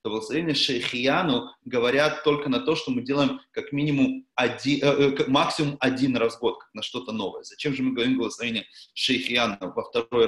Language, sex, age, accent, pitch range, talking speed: Russian, male, 30-49, native, 120-165 Hz, 165 wpm